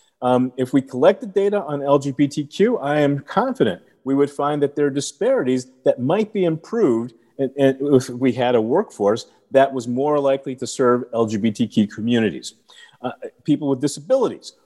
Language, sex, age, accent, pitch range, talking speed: English, male, 40-59, American, 120-160 Hz, 160 wpm